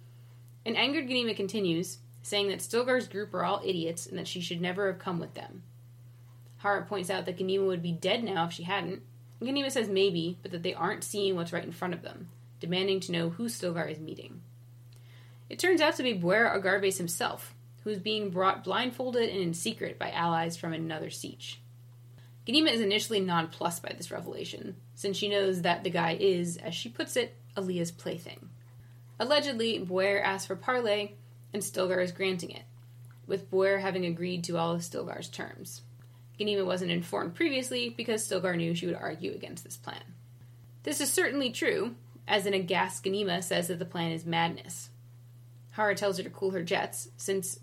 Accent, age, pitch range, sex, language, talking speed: American, 20-39, 120-200 Hz, female, English, 190 wpm